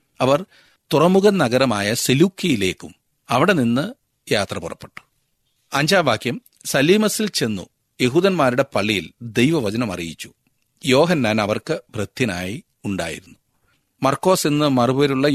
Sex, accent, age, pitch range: male, native, 40-59, 115-150 Hz